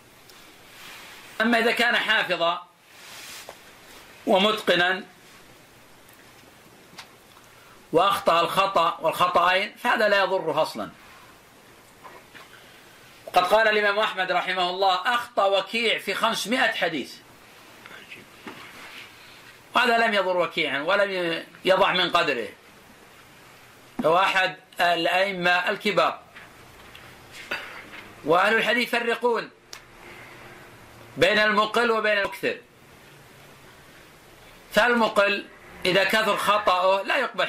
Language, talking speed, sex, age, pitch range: Arabic, 75 wpm, male, 50-69, 185-220 Hz